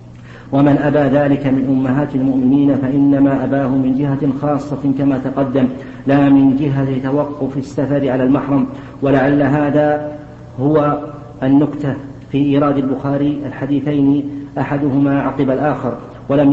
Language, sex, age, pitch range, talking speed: Arabic, male, 50-69, 135-145 Hz, 115 wpm